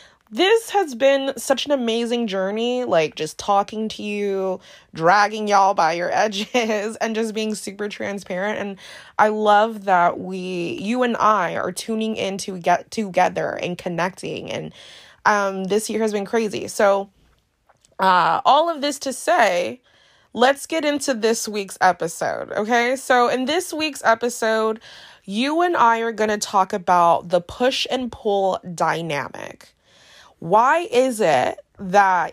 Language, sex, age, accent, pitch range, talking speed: English, female, 20-39, American, 190-255 Hz, 150 wpm